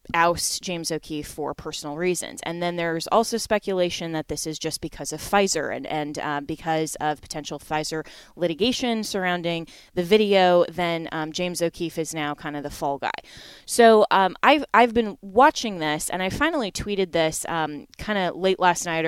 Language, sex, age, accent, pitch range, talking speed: English, female, 20-39, American, 165-205 Hz, 180 wpm